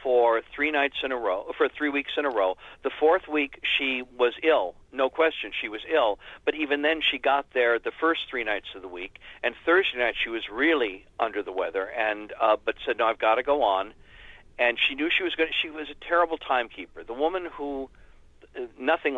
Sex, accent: male, American